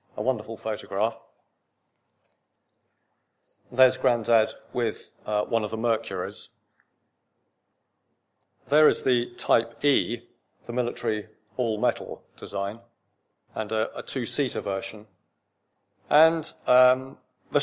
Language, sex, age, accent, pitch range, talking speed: English, male, 40-59, British, 110-125 Hz, 95 wpm